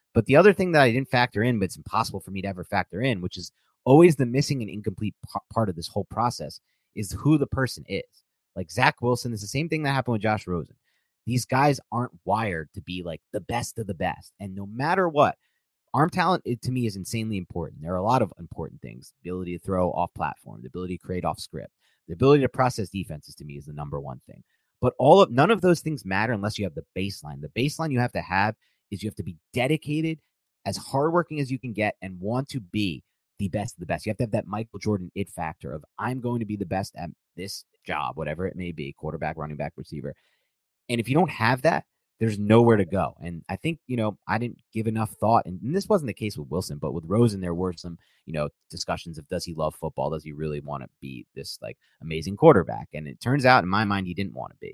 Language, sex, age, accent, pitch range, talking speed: English, male, 30-49, American, 90-125 Hz, 255 wpm